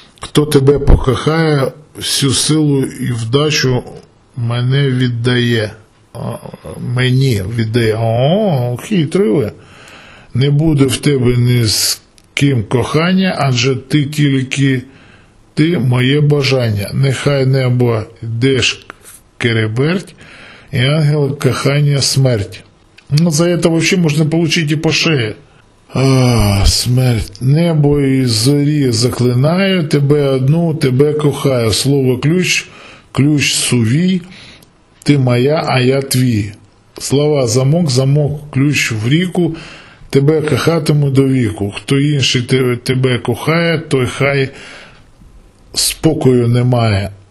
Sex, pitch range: male, 120-150 Hz